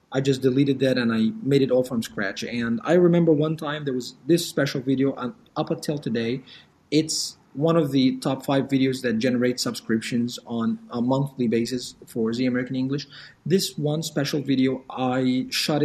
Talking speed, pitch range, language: 180 wpm, 125-155 Hz, English